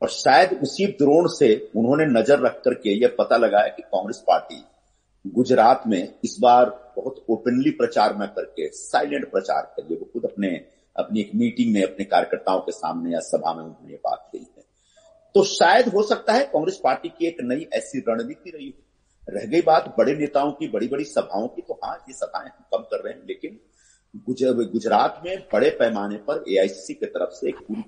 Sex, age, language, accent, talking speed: male, 50-69, Hindi, native, 195 wpm